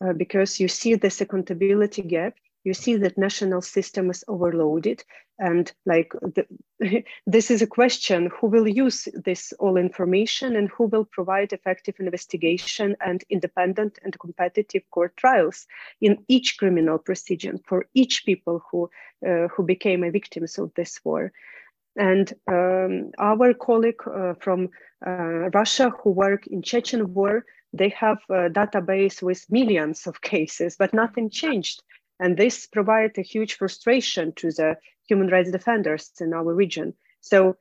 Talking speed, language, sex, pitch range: 150 wpm, English, female, 180-225 Hz